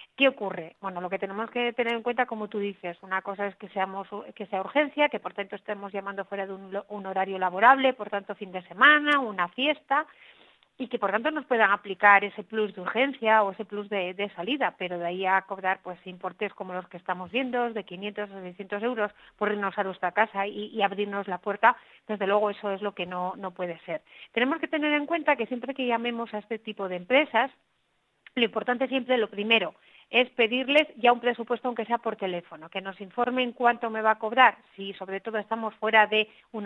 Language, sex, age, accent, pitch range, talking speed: Spanish, female, 40-59, Spanish, 195-245 Hz, 225 wpm